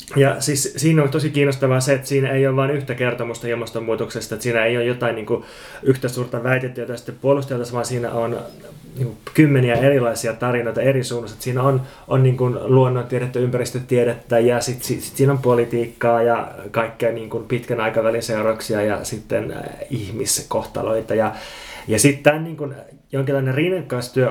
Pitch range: 115-135 Hz